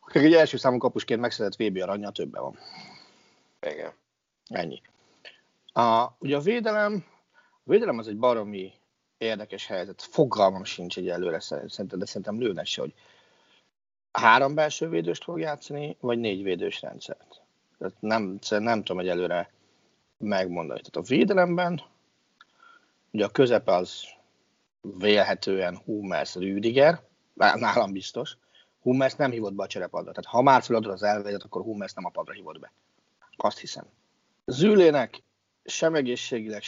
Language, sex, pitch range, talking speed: Hungarian, male, 100-145 Hz, 135 wpm